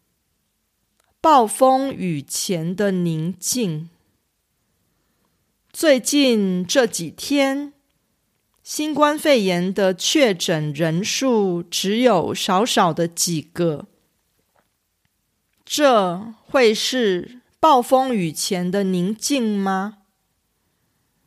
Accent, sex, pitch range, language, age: Chinese, female, 180-265 Hz, Korean, 40-59